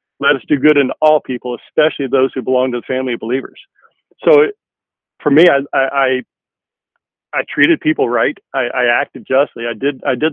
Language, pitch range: English, 130-145 Hz